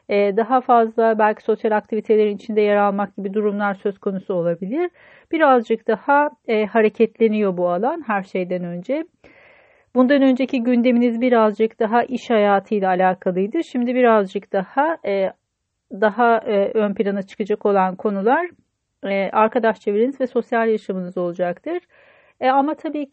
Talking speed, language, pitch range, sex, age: 135 wpm, Turkish, 205-255 Hz, female, 40-59